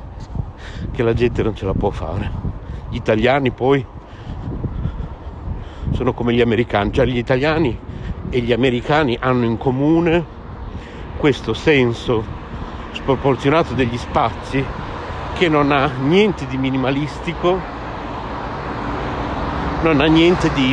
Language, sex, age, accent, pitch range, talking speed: Italian, male, 60-79, native, 110-145 Hz, 115 wpm